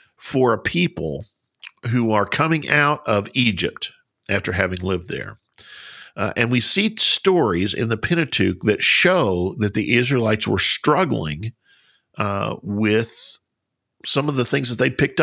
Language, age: English, 50-69